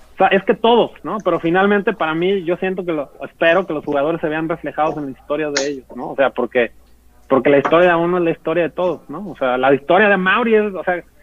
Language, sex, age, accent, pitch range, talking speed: Spanish, male, 30-49, Mexican, 140-180 Hz, 255 wpm